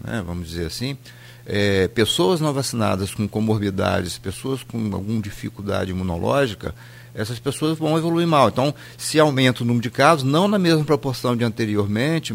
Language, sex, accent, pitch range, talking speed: Portuguese, male, Brazilian, 110-145 Hz, 160 wpm